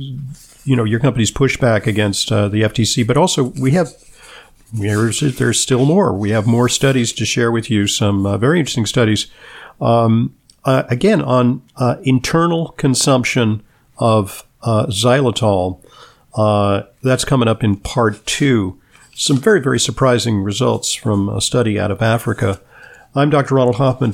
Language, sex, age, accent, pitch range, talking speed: English, male, 50-69, American, 105-130 Hz, 155 wpm